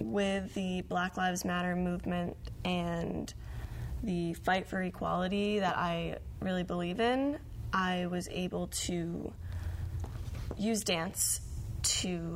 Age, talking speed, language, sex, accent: 20-39, 110 wpm, English, female, American